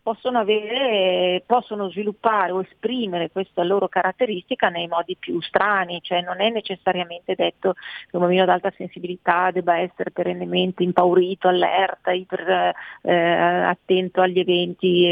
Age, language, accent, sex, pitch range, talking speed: 40-59, Italian, native, female, 180-205 Hz, 135 wpm